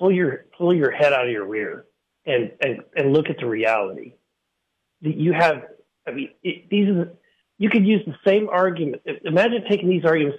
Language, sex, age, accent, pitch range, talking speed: English, male, 40-59, American, 150-205 Hz, 195 wpm